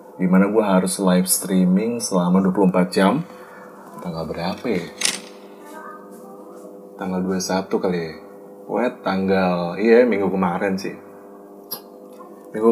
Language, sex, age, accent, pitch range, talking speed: Indonesian, male, 20-39, native, 90-100 Hz, 105 wpm